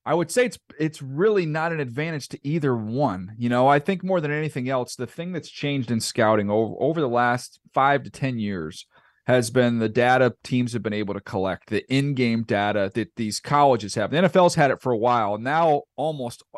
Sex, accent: male, American